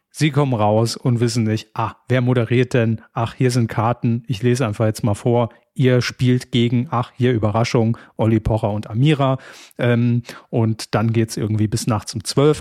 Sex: male